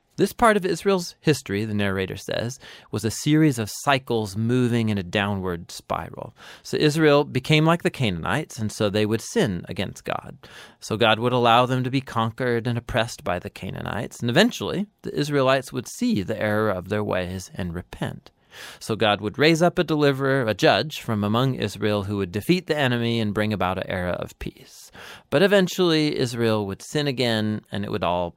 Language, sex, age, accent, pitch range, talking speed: English, male, 30-49, American, 105-140 Hz, 190 wpm